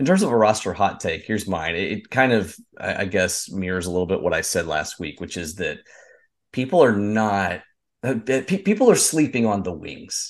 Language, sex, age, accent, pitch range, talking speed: English, male, 30-49, American, 90-110 Hz, 205 wpm